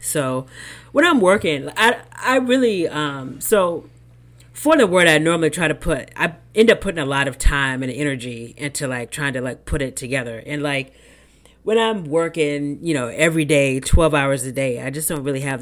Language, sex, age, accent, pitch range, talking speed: English, female, 30-49, American, 125-155 Hz, 205 wpm